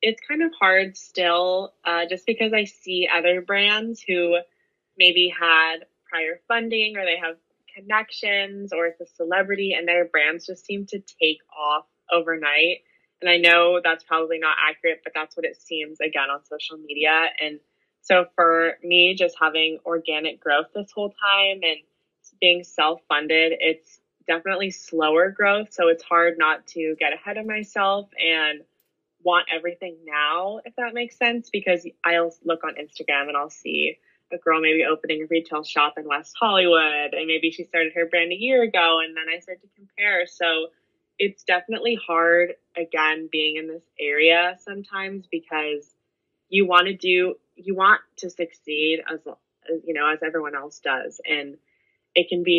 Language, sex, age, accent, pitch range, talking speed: English, female, 20-39, American, 160-195 Hz, 170 wpm